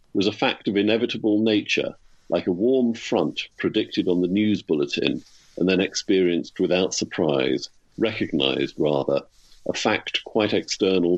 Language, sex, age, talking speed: English, male, 50-69, 140 wpm